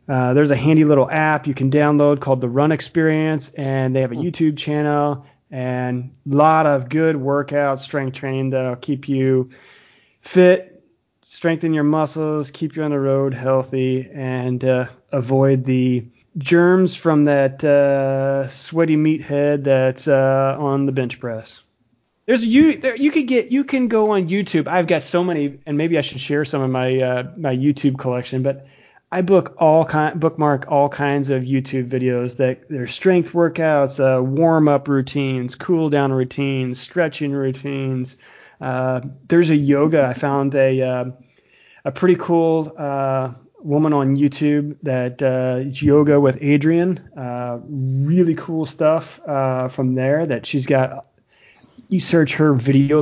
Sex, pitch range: male, 130-155 Hz